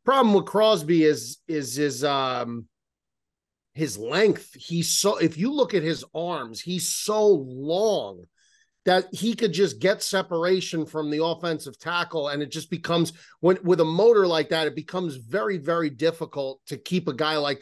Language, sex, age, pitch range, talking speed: English, male, 40-59, 150-190 Hz, 170 wpm